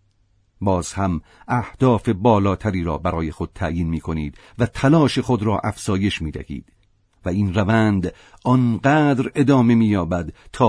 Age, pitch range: 50-69, 95-115 Hz